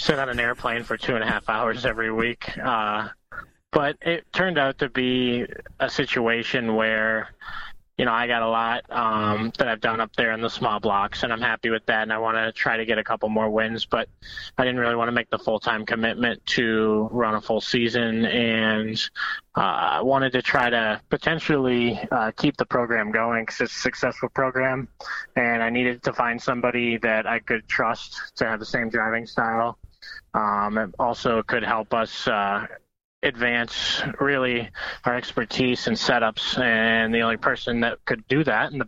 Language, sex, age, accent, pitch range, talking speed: English, male, 20-39, American, 110-125 Hz, 195 wpm